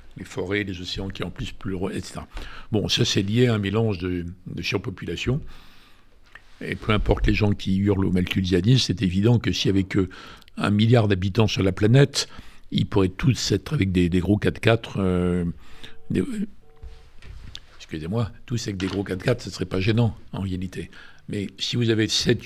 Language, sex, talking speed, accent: French, male, 185 wpm, French